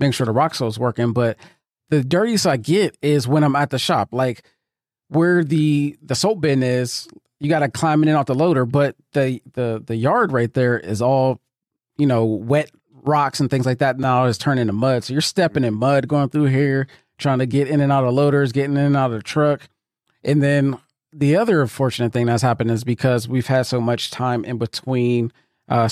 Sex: male